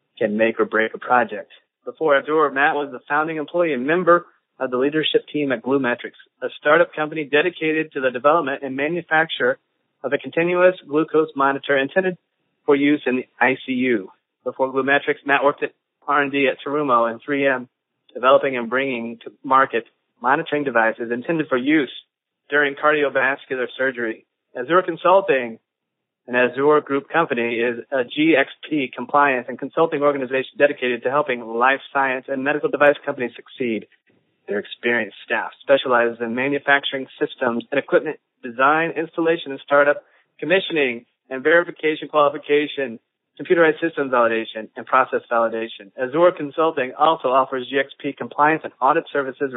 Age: 40-59